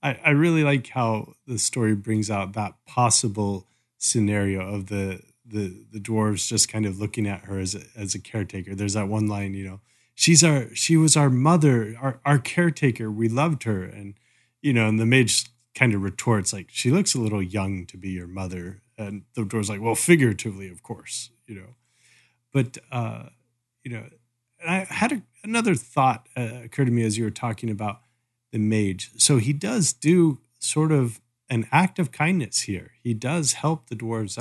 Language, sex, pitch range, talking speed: English, male, 110-130 Hz, 195 wpm